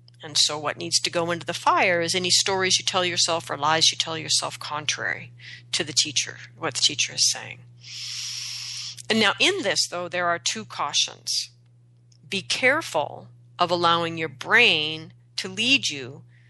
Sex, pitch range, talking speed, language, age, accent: female, 120-180 Hz, 170 wpm, English, 40-59, American